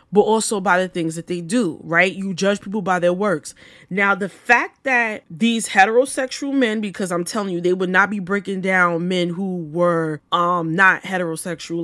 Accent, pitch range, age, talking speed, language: American, 175-215 Hz, 20-39, 195 wpm, English